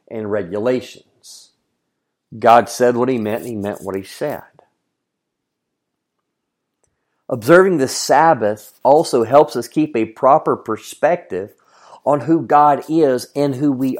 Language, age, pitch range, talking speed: English, 40-59, 125-160 Hz, 130 wpm